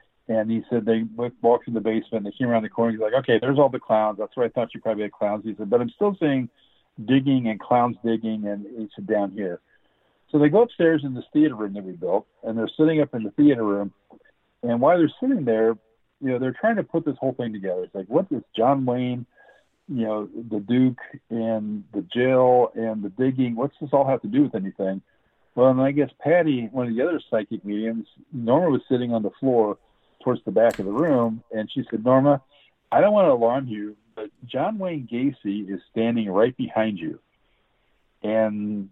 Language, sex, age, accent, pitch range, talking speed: English, male, 50-69, American, 110-135 Hz, 220 wpm